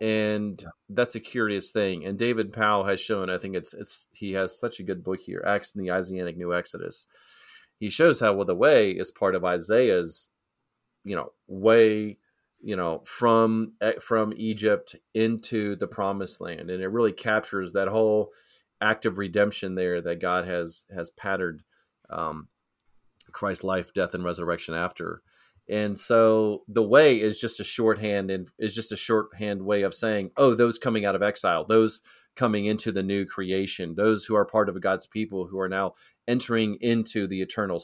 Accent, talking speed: American, 180 wpm